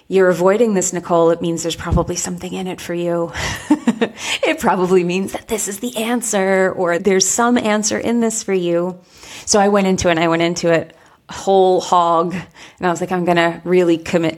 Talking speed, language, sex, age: 210 wpm, English, female, 30-49